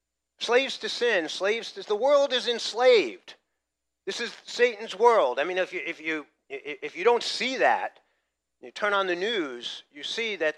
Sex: male